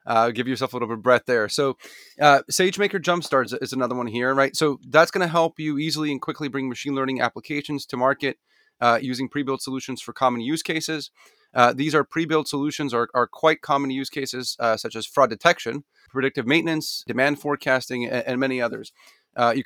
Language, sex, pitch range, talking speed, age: English, male, 125-150 Hz, 210 wpm, 30-49